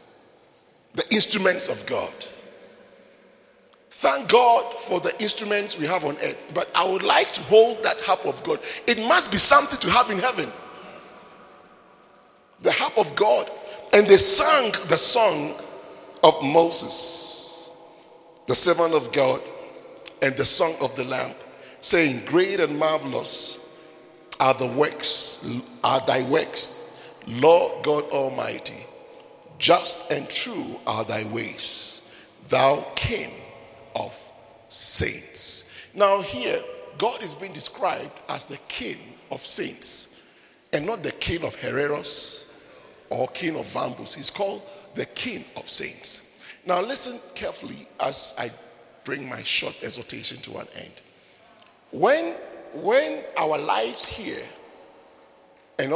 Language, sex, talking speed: English, male, 130 wpm